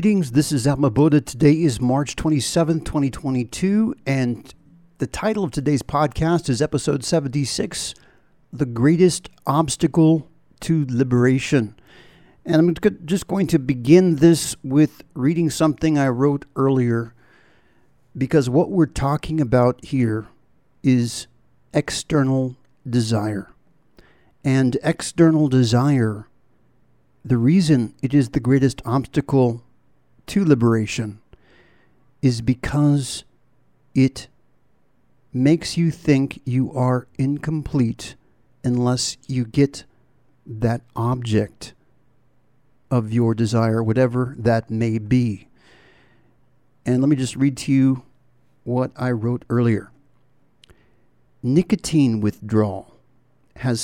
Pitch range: 125-150 Hz